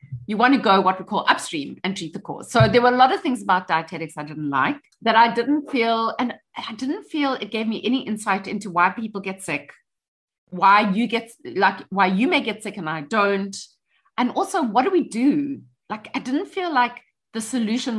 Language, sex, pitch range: English, female, 185-255 Hz